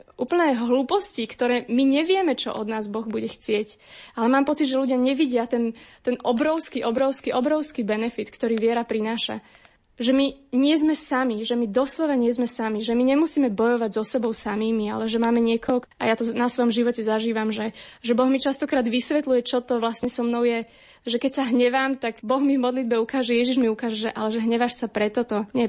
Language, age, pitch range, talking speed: Slovak, 20-39, 220-255 Hz, 205 wpm